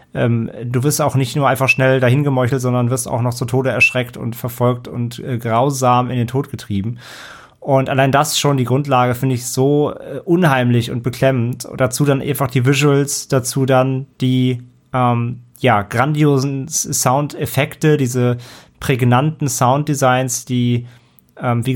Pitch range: 120-140 Hz